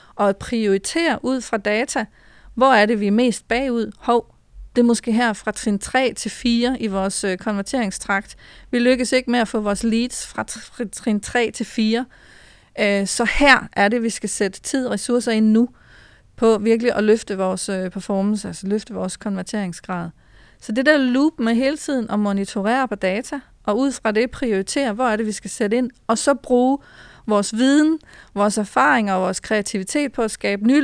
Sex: female